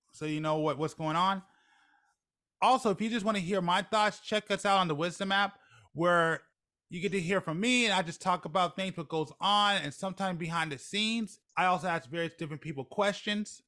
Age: 20-39